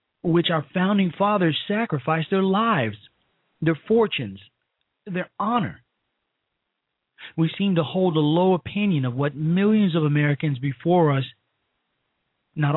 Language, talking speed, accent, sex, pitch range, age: English, 120 wpm, American, male, 130-180 Hz, 40-59